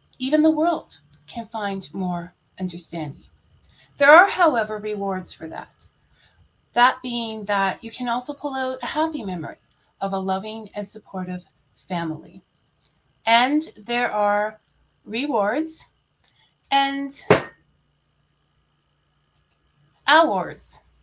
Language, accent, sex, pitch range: English, American, female, 200-280 Hz